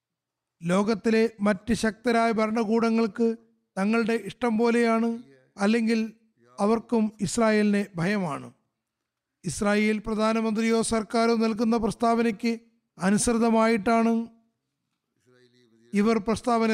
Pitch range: 170-225 Hz